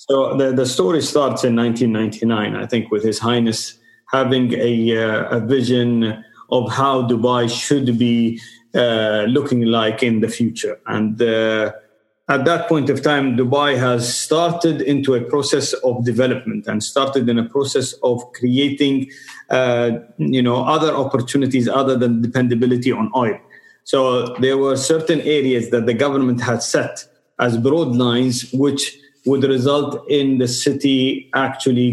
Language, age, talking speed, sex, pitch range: English, 40-59, 150 wpm, male, 120-140 Hz